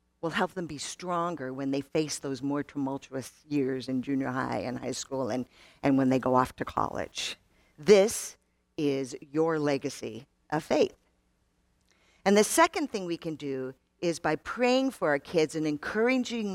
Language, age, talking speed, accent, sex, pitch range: English, 50-69, 170 wpm, American, female, 140-185 Hz